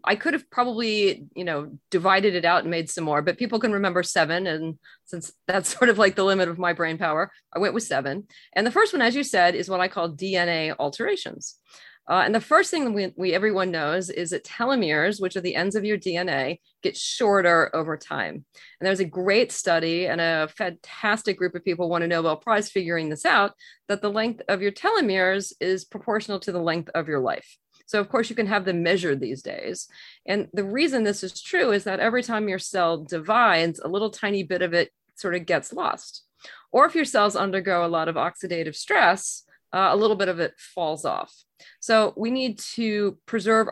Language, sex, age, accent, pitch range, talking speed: English, female, 30-49, American, 170-210 Hz, 215 wpm